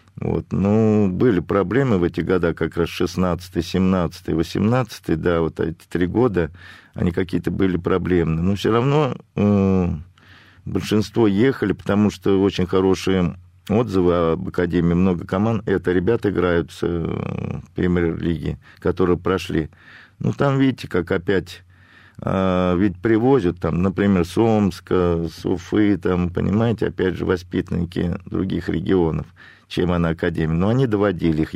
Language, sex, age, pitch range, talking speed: Russian, male, 50-69, 85-105 Hz, 135 wpm